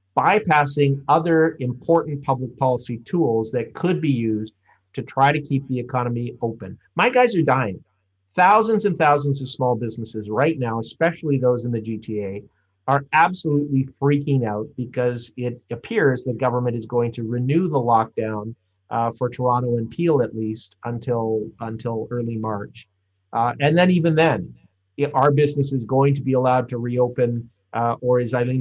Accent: American